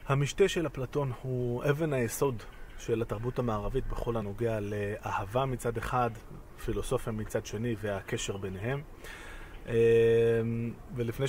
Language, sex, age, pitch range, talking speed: Hebrew, male, 20-39, 105-125 Hz, 105 wpm